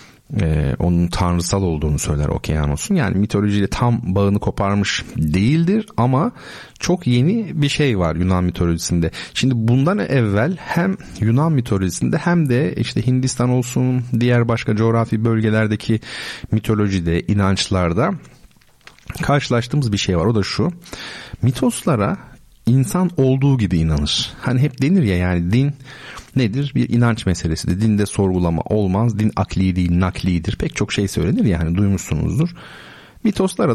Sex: male